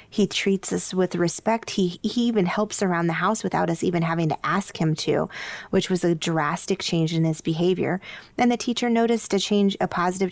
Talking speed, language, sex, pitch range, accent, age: 210 wpm, English, female, 165-190 Hz, American, 20-39